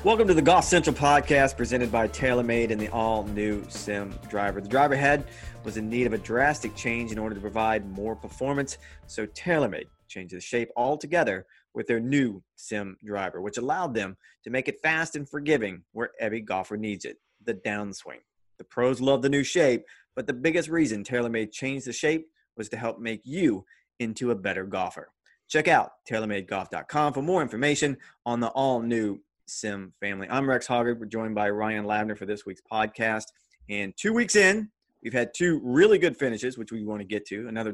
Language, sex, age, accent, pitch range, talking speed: English, male, 30-49, American, 105-140 Hz, 190 wpm